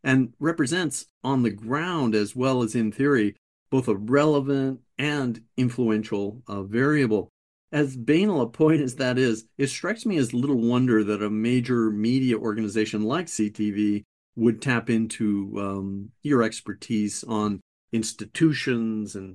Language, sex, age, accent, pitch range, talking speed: English, male, 50-69, American, 110-130 Hz, 145 wpm